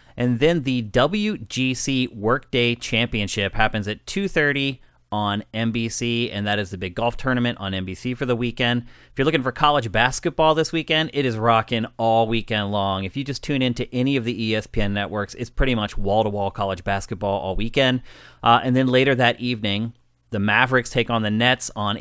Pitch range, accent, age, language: 110-135 Hz, American, 30-49, English